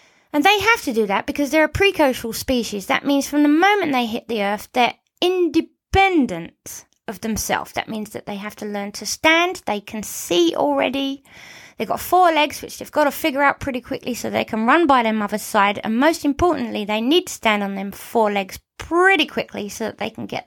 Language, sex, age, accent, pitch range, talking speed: English, female, 20-39, British, 210-295 Hz, 220 wpm